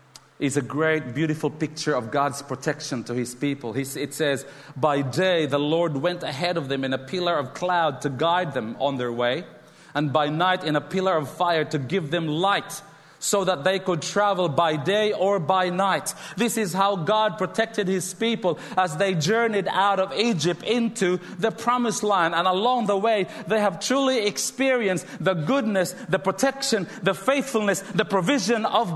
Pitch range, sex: 160-215 Hz, male